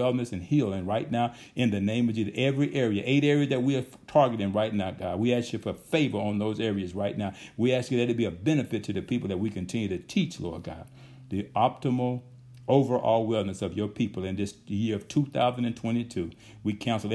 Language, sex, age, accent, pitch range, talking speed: English, male, 60-79, American, 95-125 Hz, 220 wpm